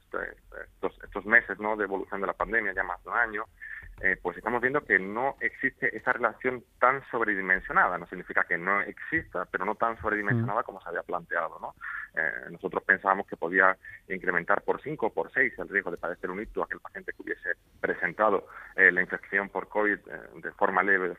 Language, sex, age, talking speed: Spanish, male, 30-49, 210 wpm